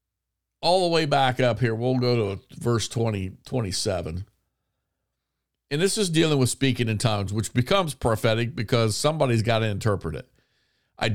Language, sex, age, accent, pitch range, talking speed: English, male, 50-69, American, 110-160 Hz, 160 wpm